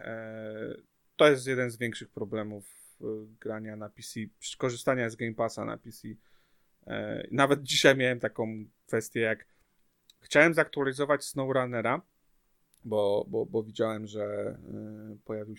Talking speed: 115 wpm